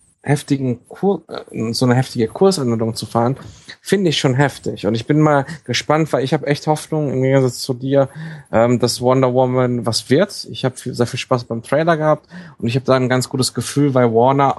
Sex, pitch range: male, 115-140 Hz